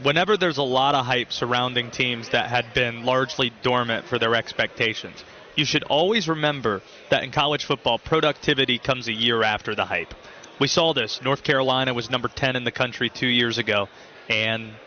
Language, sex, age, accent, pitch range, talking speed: English, male, 30-49, American, 125-165 Hz, 185 wpm